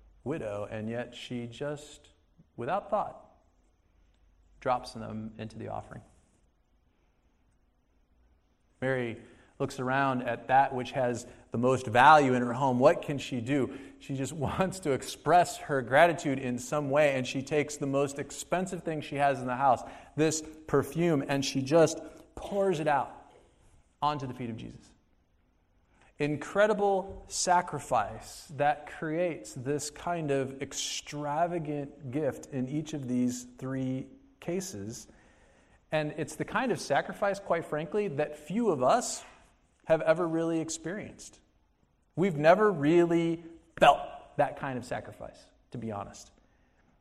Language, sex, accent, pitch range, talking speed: English, male, American, 120-160 Hz, 135 wpm